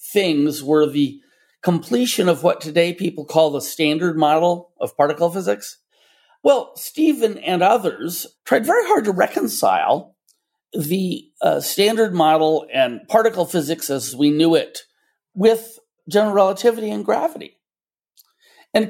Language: English